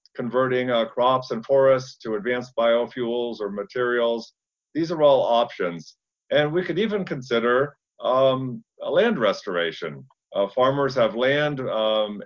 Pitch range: 105-130 Hz